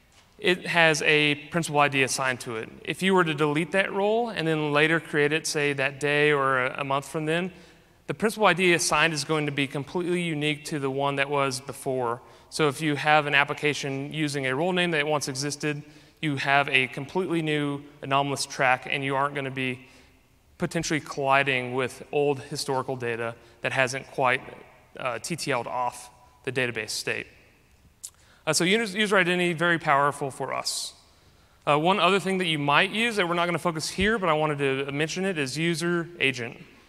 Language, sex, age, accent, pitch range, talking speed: English, male, 30-49, American, 135-170 Hz, 190 wpm